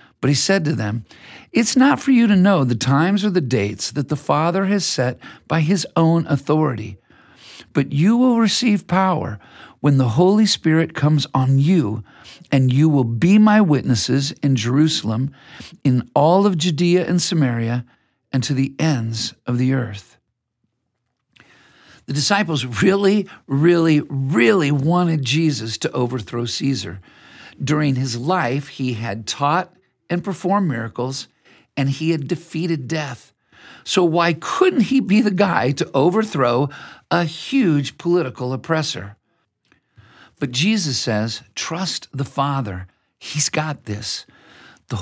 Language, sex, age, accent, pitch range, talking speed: English, male, 50-69, American, 125-175 Hz, 140 wpm